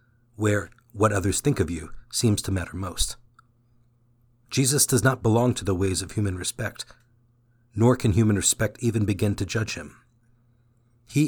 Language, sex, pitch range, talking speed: English, male, 105-120 Hz, 160 wpm